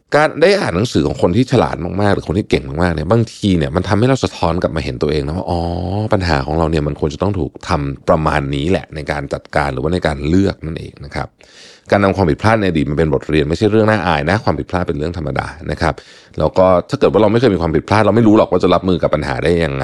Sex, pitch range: male, 75-110 Hz